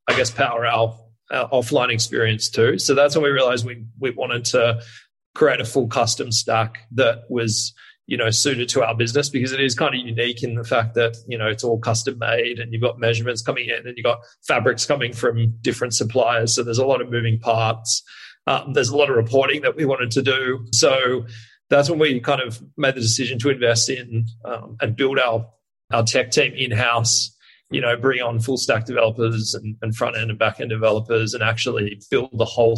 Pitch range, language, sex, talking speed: 115-125 Hz, English, male, 215 wpm